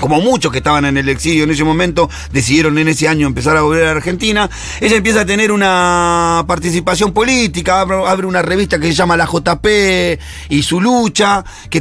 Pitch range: 150-195 Hz